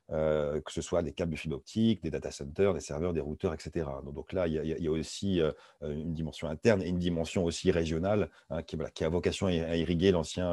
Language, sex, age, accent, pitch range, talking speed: French, male, 40-59, French, 85-115 Hz, 250 wpm